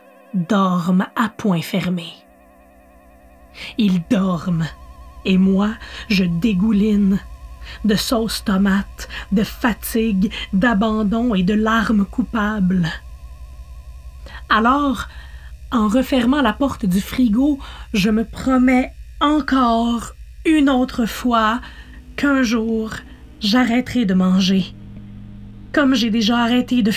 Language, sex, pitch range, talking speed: French, female, 190-245 Hz, 100 wpm